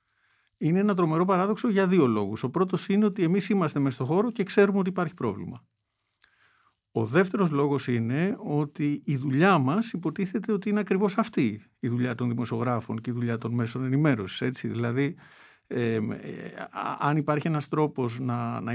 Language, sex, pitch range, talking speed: Greek, male, 120-190 Hz, 165 wpm